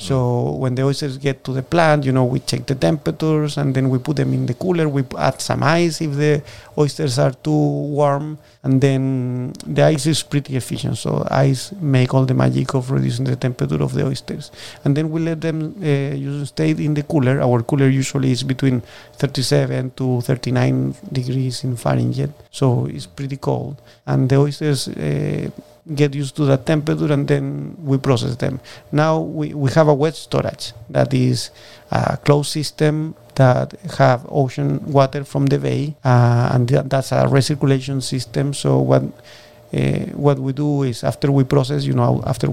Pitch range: 125-145 Hz